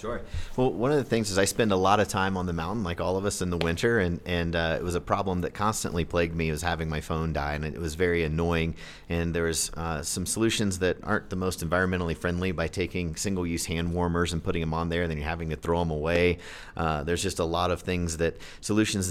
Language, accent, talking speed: English, American, 260 wpm